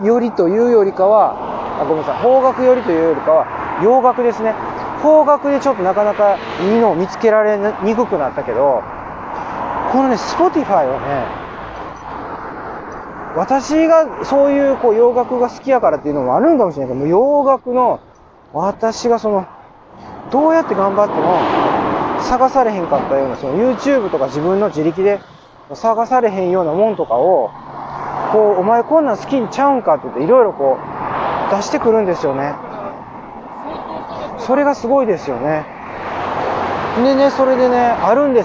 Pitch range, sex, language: 195-265 Hz, male, Japanese